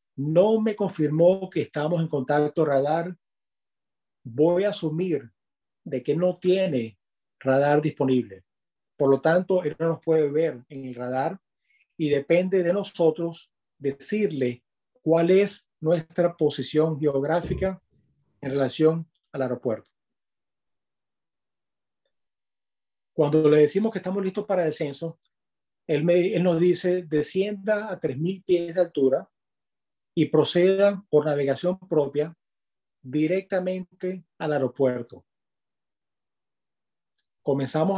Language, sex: English, male